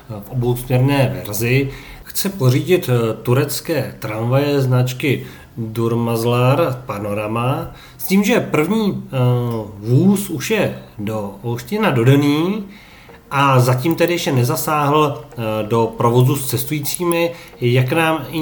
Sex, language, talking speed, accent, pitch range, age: male, Czech, 105 wpm, native, 115-145 Hz, 40-59